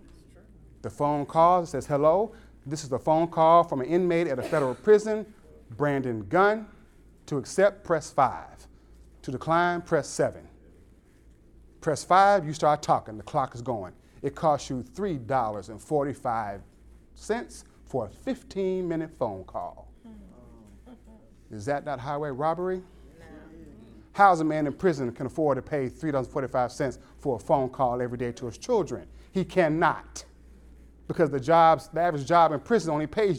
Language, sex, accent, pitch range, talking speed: English, male, American, 120-190 Hz, 145 wpm